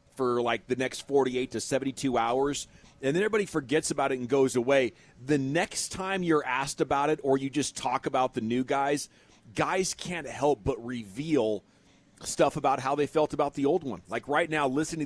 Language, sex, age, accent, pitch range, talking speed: English, male, 40-59, American, 115-140 Hz, 200 wpm